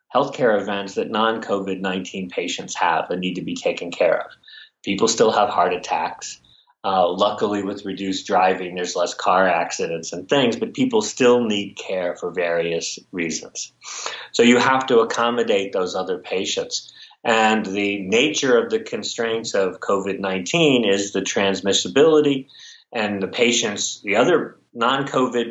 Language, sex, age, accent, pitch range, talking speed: English, male, 40-59, American, 100-130 Hz, 145 wpm